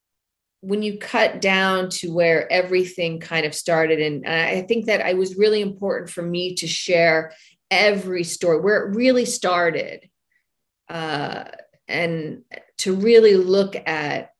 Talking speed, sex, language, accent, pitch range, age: 140 wpm, female, English, American, 165-210 Hz, 40-59